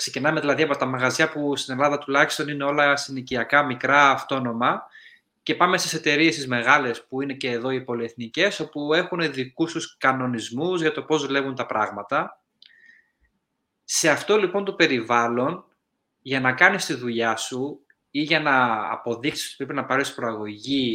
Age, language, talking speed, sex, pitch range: 20-39, Greek, 165 wpm, male, 120-160 Hz